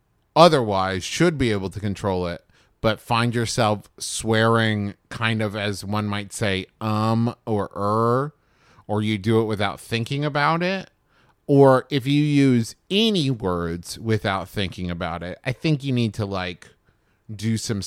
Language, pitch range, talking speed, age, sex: English, 95-120 Hz, 155 wpm, 30-49, male